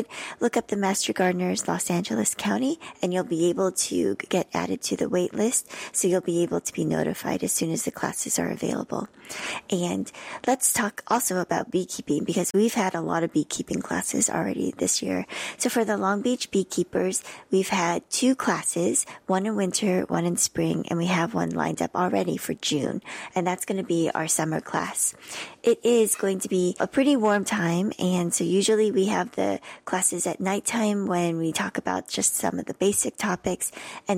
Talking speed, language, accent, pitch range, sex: 200 wpm, English, American, 165-210 Hz, female